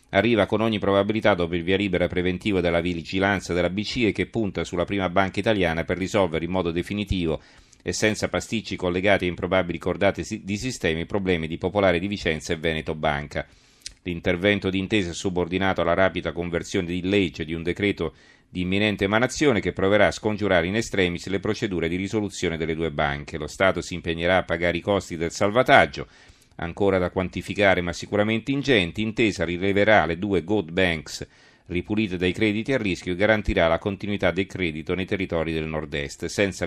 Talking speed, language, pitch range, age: 175 wpm, Italian, 85-105 Hz, 40-59